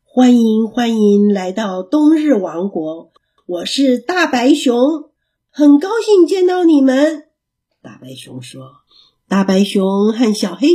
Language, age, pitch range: Chinese, 50-69, 190-295 Hz